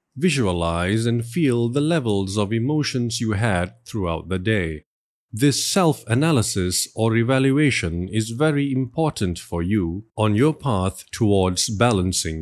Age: 50-69